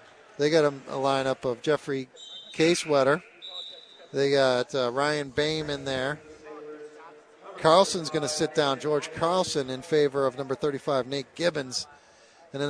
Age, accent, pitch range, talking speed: 40-59, American, 135-170 Hz, 145 wpm